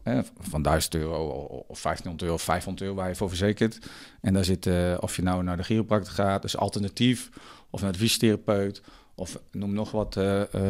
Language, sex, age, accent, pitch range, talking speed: Dutch, male, 40-59, Dutch, 90-105 Hz, 210 wpm